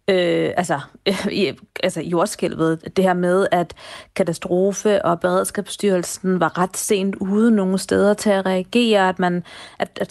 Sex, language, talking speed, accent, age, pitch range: female, Danish, 150 wpm, native, 30-49, 180-210 Hz